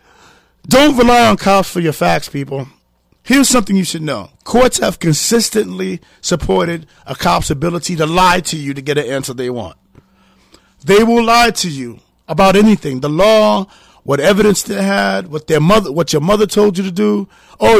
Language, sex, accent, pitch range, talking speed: English, male, American, 145-200 Hz, 180 wpm